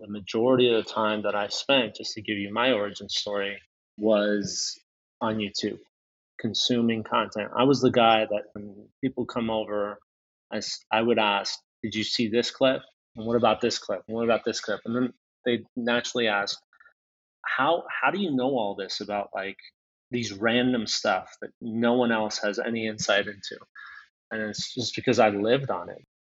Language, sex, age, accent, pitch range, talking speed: English, male, 30-49, American, 105-120 Hz, 185 wpm